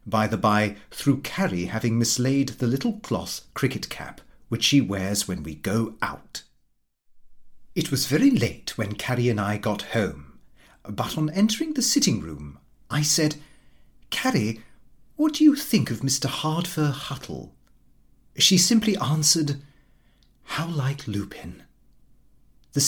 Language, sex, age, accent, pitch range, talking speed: English, male, 40-59, British, 105-170 Hz, 135 wpm